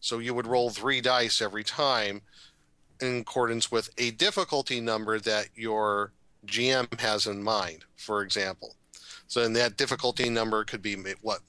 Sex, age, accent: male, 40-59, American